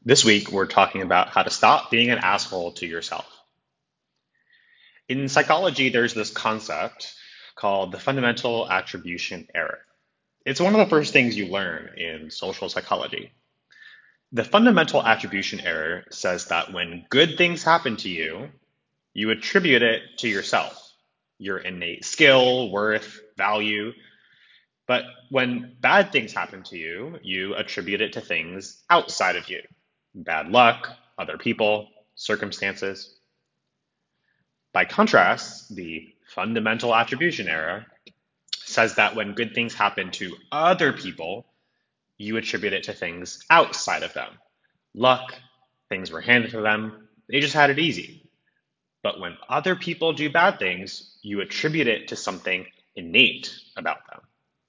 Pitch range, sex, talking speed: 100-130 Hz, male, 135 wpm